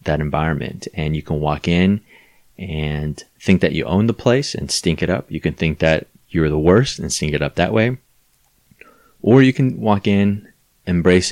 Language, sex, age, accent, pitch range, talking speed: English, male, 30-49, American, 80-95 Hz, 195 wpm